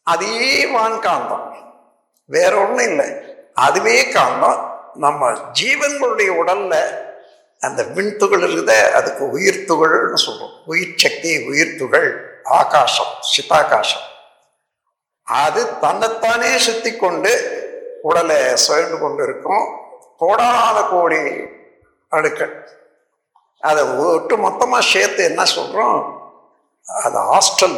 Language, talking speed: Tamil, 85 wpm